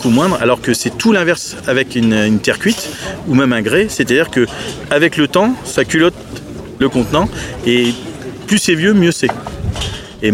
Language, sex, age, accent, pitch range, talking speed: French, male, 40-59, French, 110-150 Hz, 185 wpm